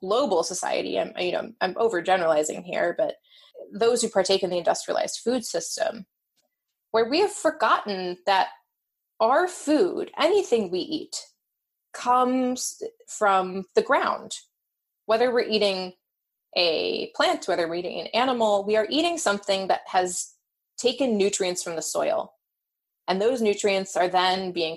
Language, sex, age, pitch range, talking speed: English, female, 20-39, 190-275 Hz, 140 wpm